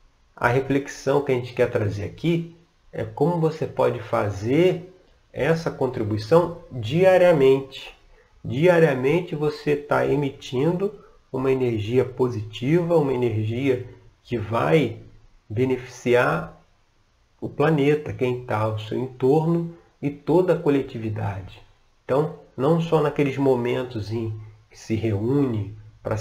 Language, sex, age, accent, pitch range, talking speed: Portuguese, male, 40-59, Brazilian, 110-145 Hz, 110 wpm